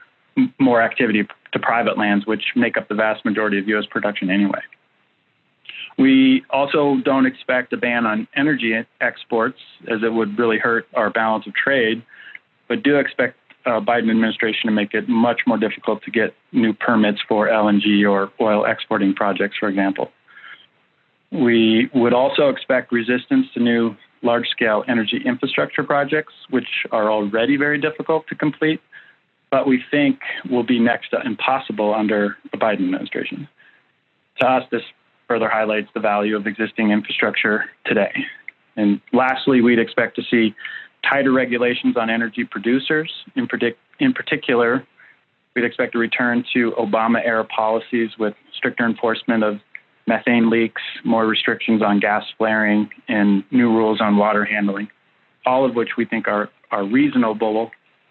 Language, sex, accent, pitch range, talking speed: English, male, American, 105-125 Hz, 150 wpm